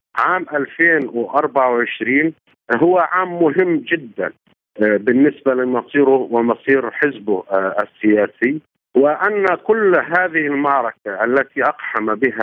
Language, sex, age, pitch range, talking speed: Arabic, male, 50-69, 115-160 Hz, 85 wpm